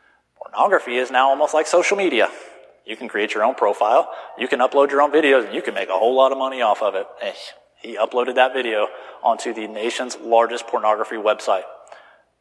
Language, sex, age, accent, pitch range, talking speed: English, male, 30-49, American, 120-145 Hz, 200 wpm